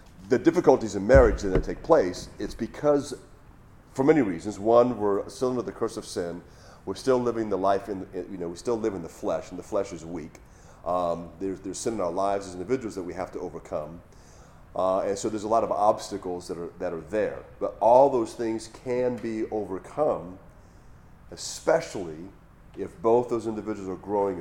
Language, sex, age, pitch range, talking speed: English, male, 40-59, 95-120 Hz, 195 wpm